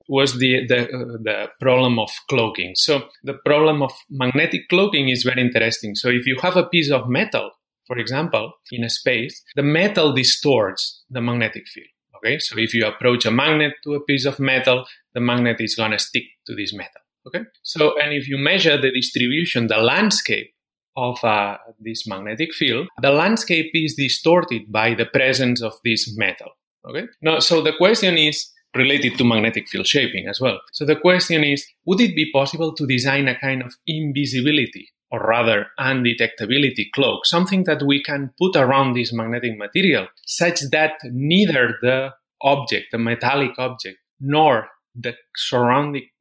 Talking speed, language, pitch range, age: 175 wpm, English, 120-150 Hz, 30-49